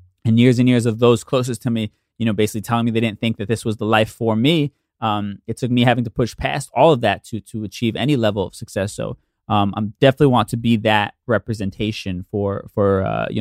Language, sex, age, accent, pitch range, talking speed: English, male, 20-39, American, 110-145 Hz, 245 wpm